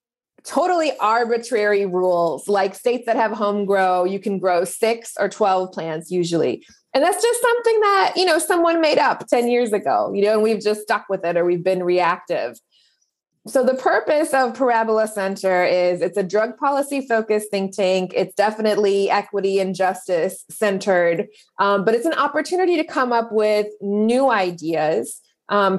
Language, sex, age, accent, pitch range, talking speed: English, female, 20-39, American, 185-235 Hz, 170 wpm